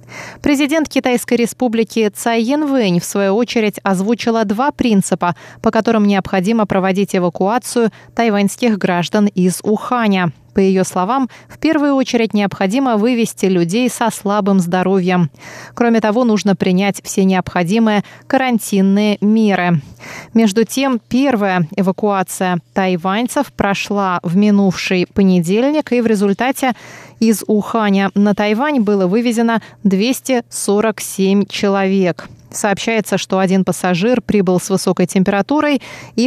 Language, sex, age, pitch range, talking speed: Russian, female, 20-39, 190-235 Hz, 115 wpm